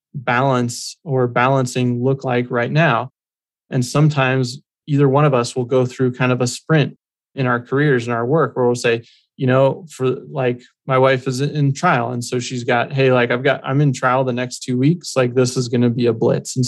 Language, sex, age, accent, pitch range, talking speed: English, male, 20-39, American, 125-140 Hz, 225 wpm